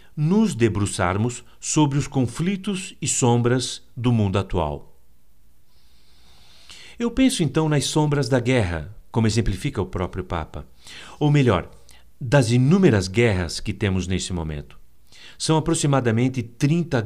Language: Portuguese